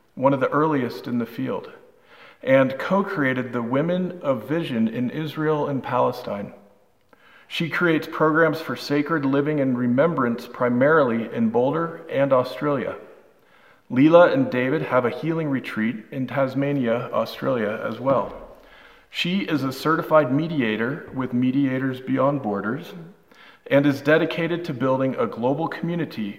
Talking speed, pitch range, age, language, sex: 135 wpm, 125-160 Hz, 40-59, English, male